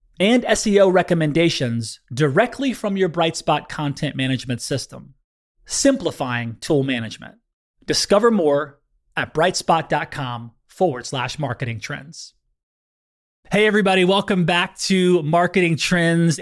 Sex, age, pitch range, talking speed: male, 30-49, 145-185 Hz, 100 wpm